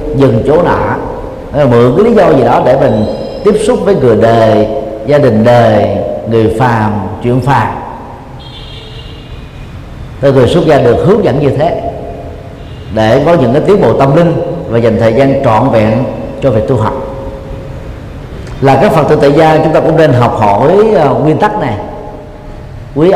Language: Vietnamese